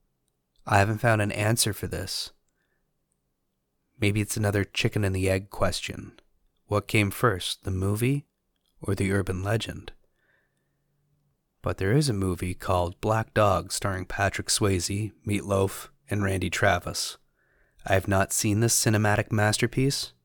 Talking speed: 140 wpm